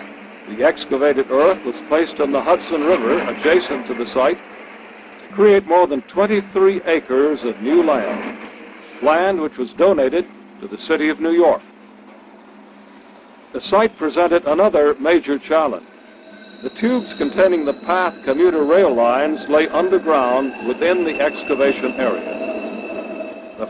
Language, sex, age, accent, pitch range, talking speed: English, male, 60-79, American, 145-195 Hz, 135 wpm